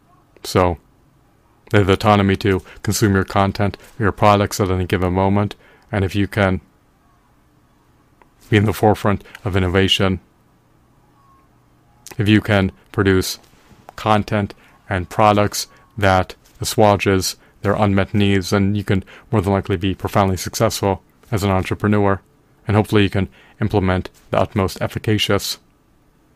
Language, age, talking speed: English, 30-49, 130 wpm